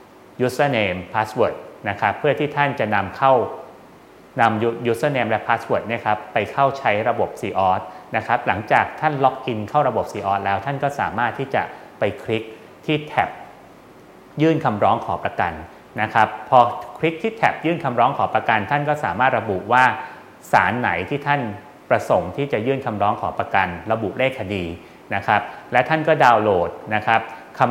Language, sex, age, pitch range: English, male, 30-49, 105-145 Hz